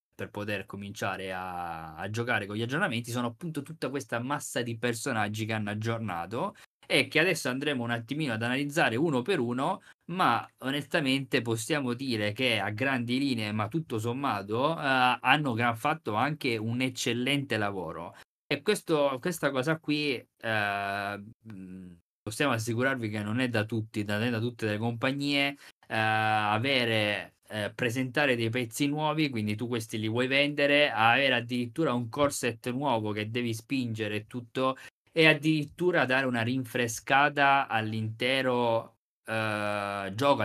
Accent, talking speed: native, 145 wpm